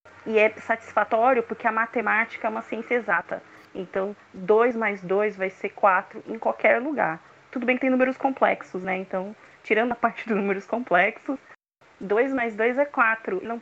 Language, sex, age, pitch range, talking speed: Portuguese, female, 20-39, 185-230 Hz, 175 wpm